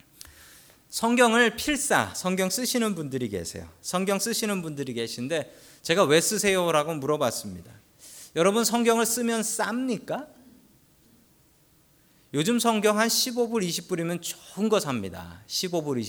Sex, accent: male, native